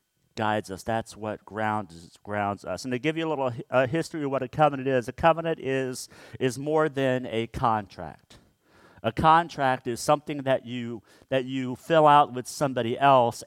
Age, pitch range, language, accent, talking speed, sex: 50-69, 115-135 Hz, English, American, 185 wpm, male